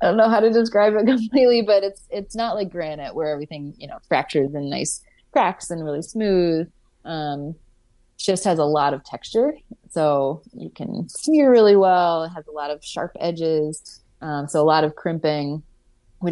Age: 20-39